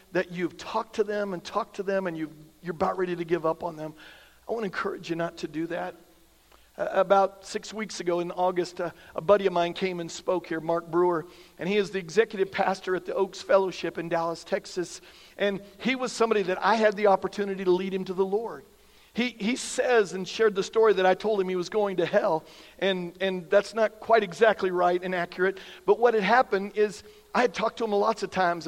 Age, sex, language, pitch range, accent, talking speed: 50-69, male, English, 175-215 Hz, American, 235 wpm